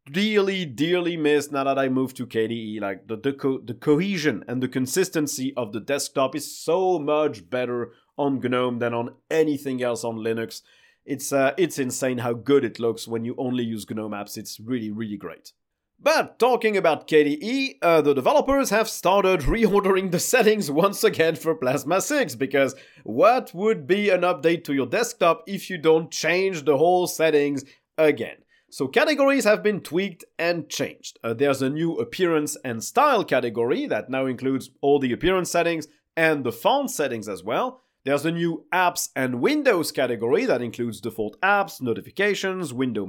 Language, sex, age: English, male, 30-49